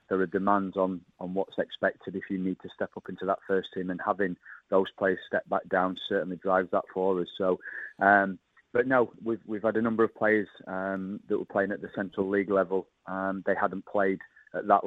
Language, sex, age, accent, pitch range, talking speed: English, male, 30-49, British, 95-100 Hz, 220 wpm